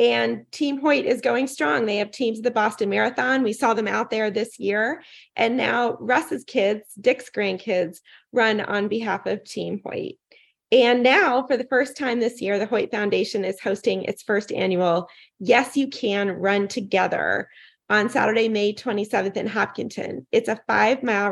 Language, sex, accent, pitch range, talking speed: English, female, American, 205-250 Hz, 175 wpm